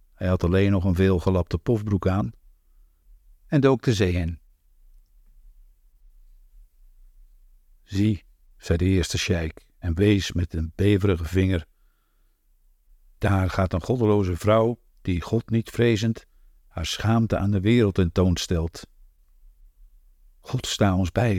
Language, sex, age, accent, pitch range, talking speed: French, male, 50-69, Dutch, 80-115 Hz, 125 wpm